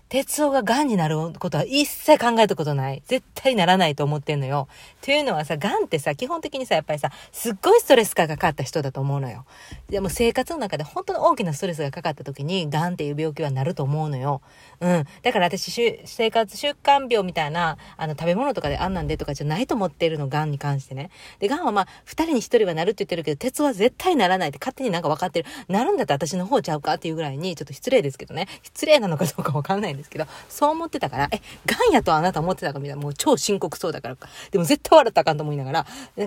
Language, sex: Japanese, female